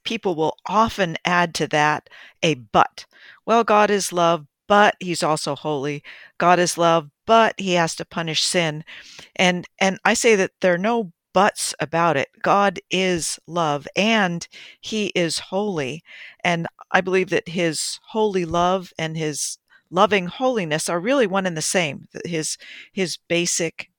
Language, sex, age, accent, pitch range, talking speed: English, female, 50-69, American, 155-195 Hz, 155 wpm